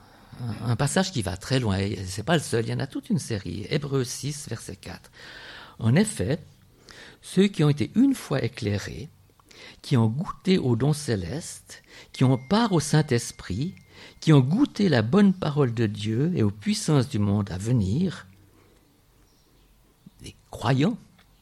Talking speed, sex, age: 165 wpm, male, 50-69